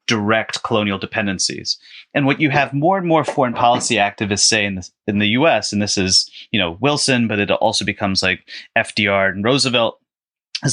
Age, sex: 30-49, male